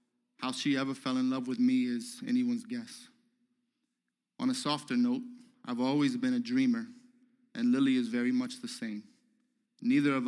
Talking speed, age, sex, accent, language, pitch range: 170 wpm, 20-39, male, American, English, 230-250 Hz